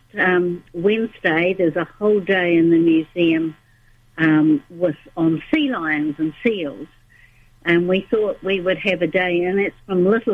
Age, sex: 60-79, female